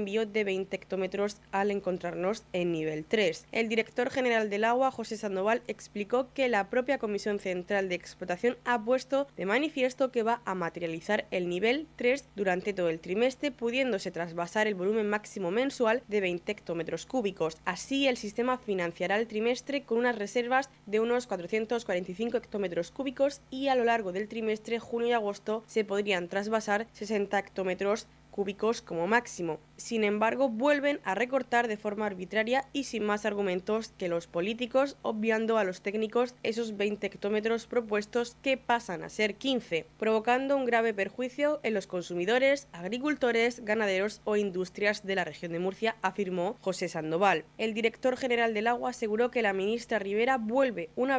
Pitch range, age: 195-245 Hz, 20-39